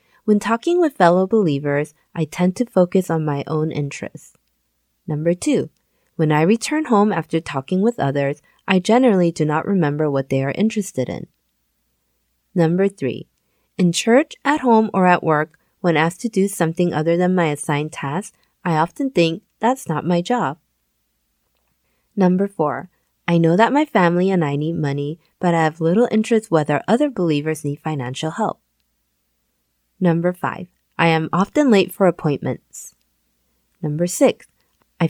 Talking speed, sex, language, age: 155 wpm, female, English, 30-49